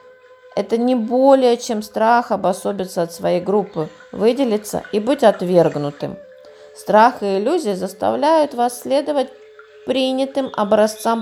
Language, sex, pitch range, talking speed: Russian, female, 195-265 Hz, 110 wpm